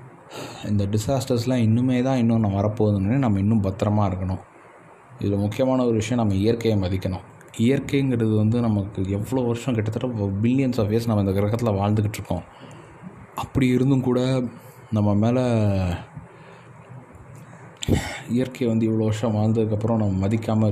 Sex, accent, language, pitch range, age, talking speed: male, native, Tamil, 105-125 Hz, 20-39, 125 wpm